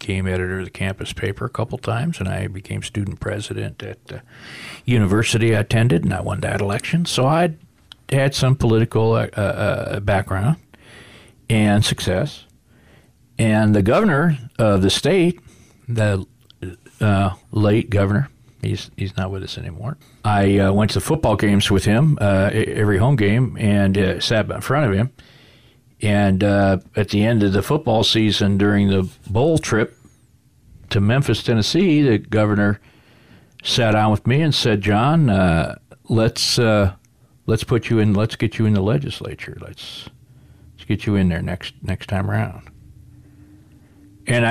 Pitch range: 100-125 Hz